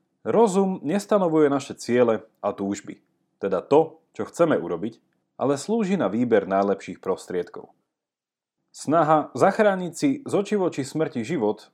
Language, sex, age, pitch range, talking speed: Slovak, male, 30-49, 110-175 Hz, 120 wpm